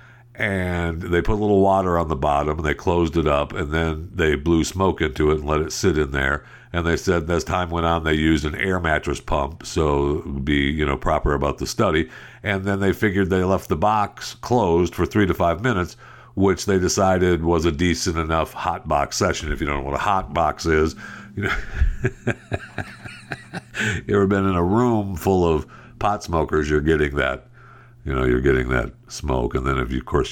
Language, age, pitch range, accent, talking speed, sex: English, 60-79, 75-105 Hz, American, 220 wpm, male